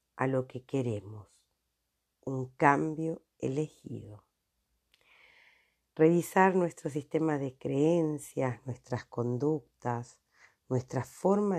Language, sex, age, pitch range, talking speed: Spanish, female, 50-69, 125-160 Hz, 85 wpm